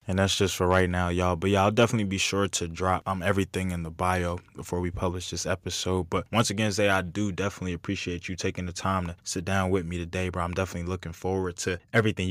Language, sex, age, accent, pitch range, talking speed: English, male, 20-39, American, 90-100 Hz, 245 wpm